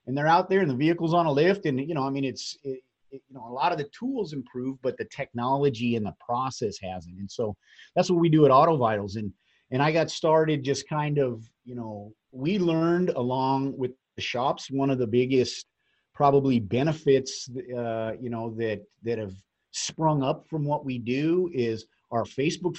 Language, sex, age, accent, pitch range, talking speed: English, male, 30-49, American, 120-150 Hz, 205 wpm